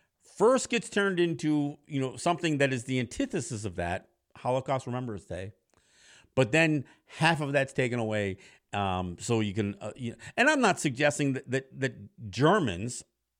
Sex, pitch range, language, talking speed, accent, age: male, 115-185 Hz, English, 170 wpm, American, 50-69